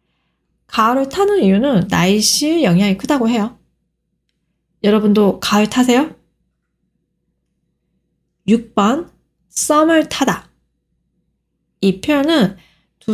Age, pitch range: 20-39, 190-265 Hz